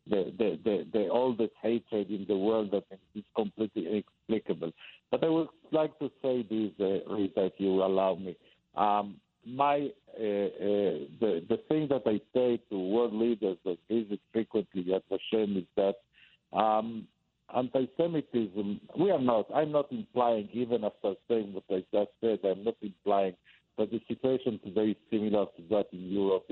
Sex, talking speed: male, 165 wpm